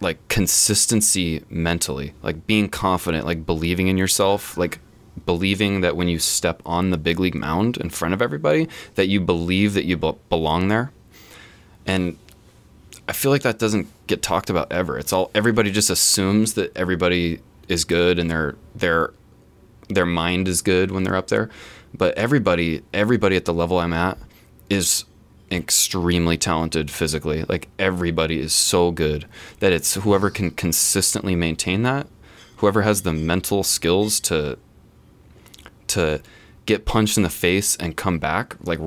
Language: English